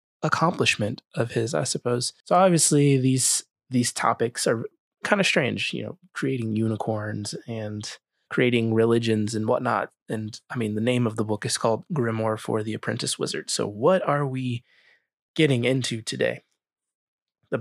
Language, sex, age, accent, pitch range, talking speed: English, male, 20-39, American, 110-130 Hz, 155 wpm